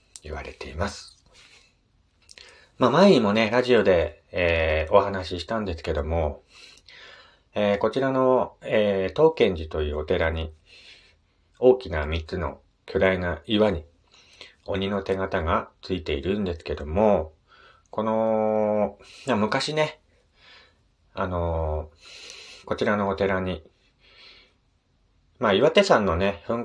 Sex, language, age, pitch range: male, Japanese, 40-59, 85-115 Hz